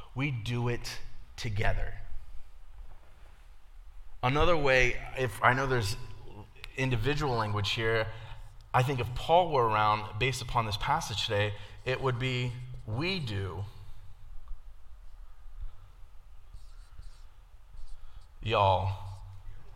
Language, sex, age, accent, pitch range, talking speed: English, male, 30-49, American, 95-120 Hz, 90 wpm